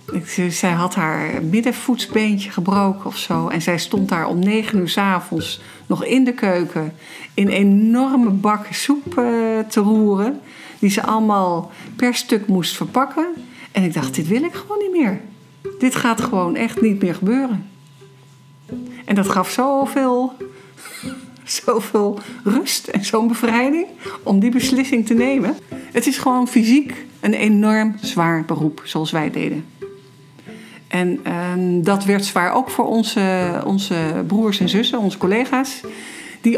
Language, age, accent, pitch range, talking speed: Dutch, 50-69, Dutch, 180-235 Hz, 145 wpm